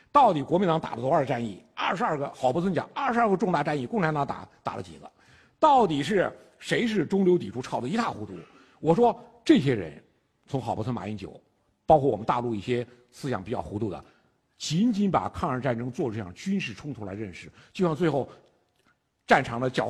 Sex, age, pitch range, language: male, 50-69, 115-180 Hz, Chinese